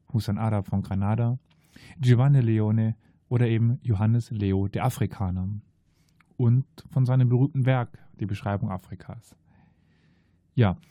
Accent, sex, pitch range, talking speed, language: German, male, 105-130 Hz, 115 wpm, German